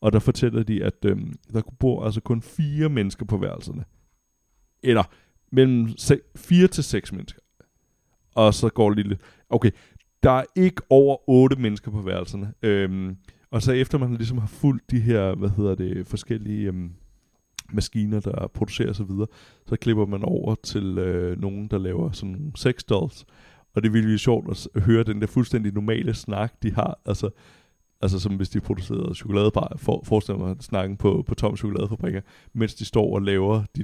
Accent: native